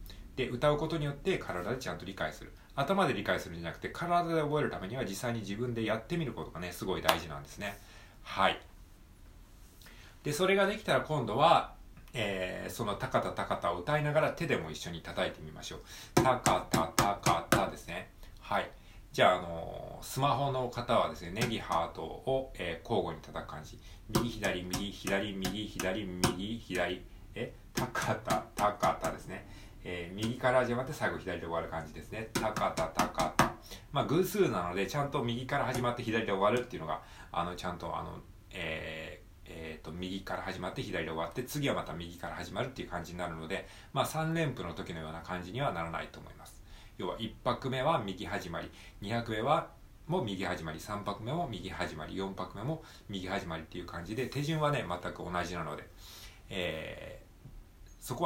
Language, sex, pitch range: Japanese, male, 90-125 Hz